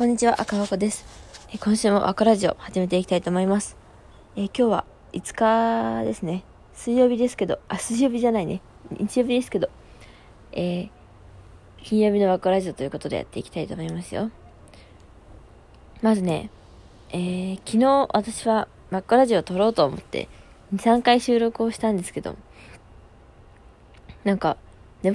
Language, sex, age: Japanese, female, 20-39